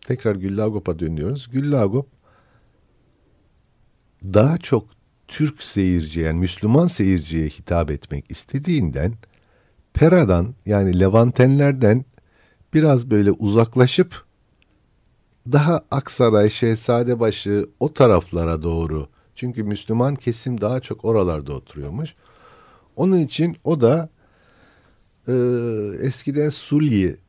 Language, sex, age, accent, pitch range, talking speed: Turkish, male, 60-79, native, 80-120 Hz, 90 wpm